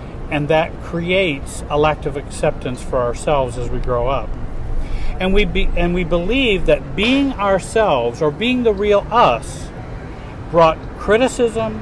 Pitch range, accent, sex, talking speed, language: 125-200 Hz, American, male, 145 wpm, English